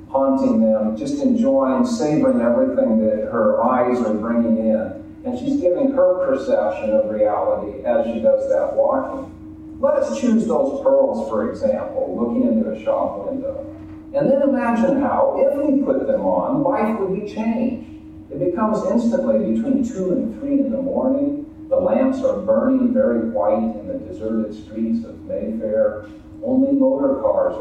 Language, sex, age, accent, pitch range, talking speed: English, male, 40-59, American, 245-275 Hz, 160 wpm